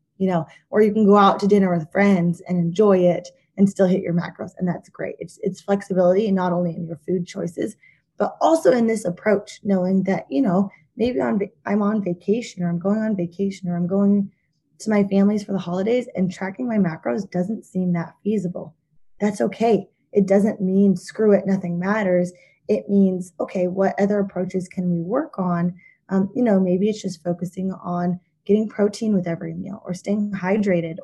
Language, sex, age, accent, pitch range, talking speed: English, female, 20-39, American, 175-205 Hz, 195 wpm